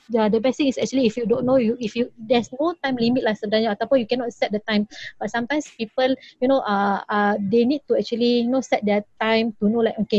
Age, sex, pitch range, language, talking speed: 20-39, female, 215-250 Hz, Malay, 255 wpm